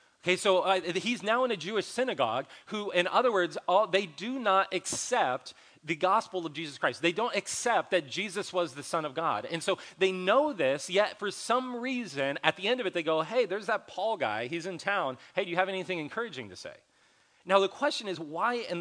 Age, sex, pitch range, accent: 30-49, male, 150-210 Hz, American